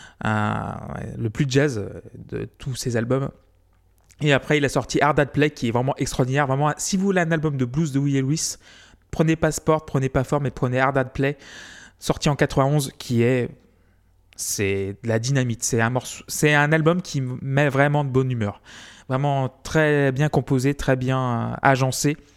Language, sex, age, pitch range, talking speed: French, male, 20-39, 120-150 Hz, 190 wpm